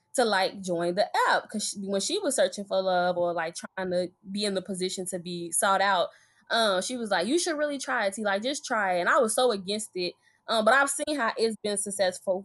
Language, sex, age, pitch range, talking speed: English, female, 10-29, 190-255 Hz, 255 wpm